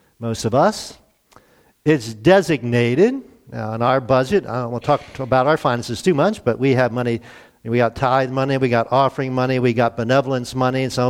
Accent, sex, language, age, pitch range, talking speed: American, male, English, 50-69, 125-165 Hz, 205 wpm